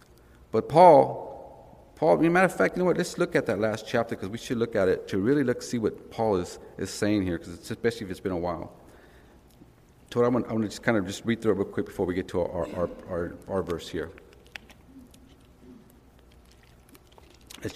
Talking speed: 230 wpm